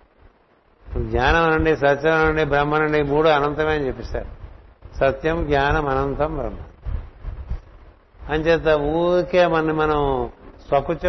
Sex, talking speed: male, 105 wpm